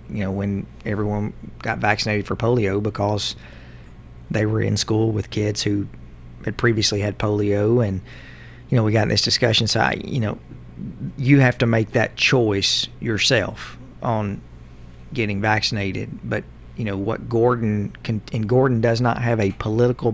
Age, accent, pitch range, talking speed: 40-59, American, 100-115 Hz, 160 wpm